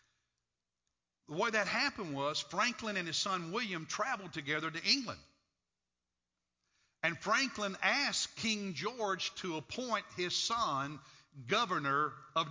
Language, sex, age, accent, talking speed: English, male, 50-69, American, 120 wpm